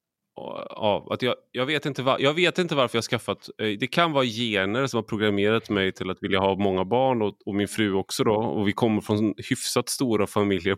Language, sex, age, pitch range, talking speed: Swedish, male, 30-49, 100-130 Hz, 235 wpm